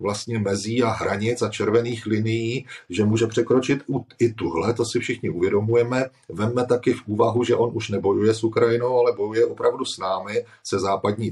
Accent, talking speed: native, 175 wpm